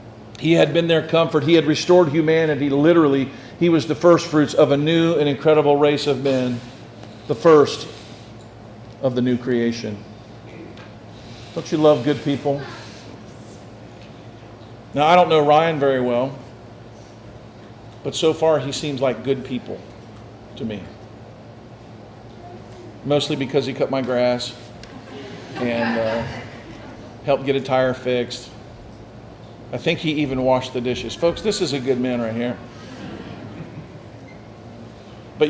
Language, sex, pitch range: English, male, 115-145 Hz